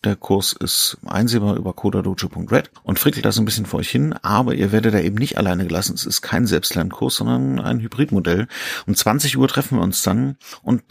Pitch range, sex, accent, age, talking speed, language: 95-115 Hz, male, German, 40-59, 205 wpm, German